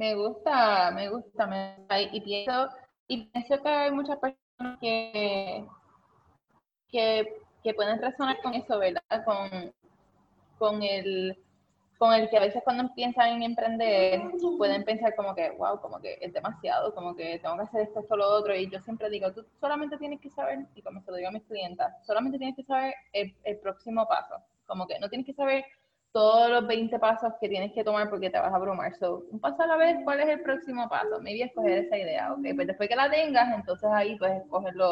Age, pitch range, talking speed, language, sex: 20-39, 200-265 Hz, 215 wpm, Spanish, female